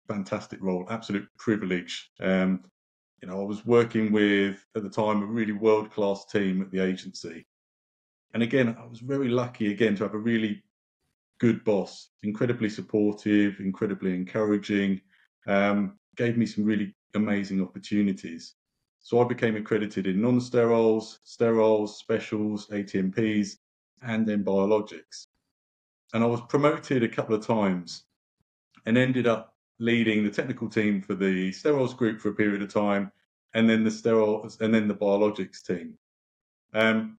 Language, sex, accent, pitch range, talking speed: English, male, British, 95-115 Hz, 150 wpm